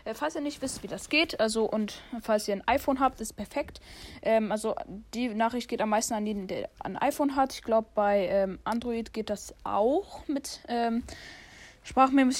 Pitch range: 215-270 Hz